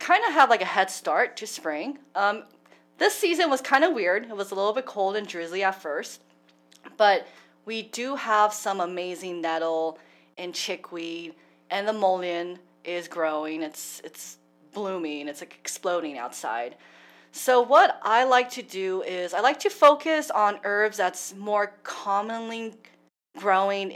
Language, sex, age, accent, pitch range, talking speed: English, female, 30-49, American, 170-215 Hz, 160 wpm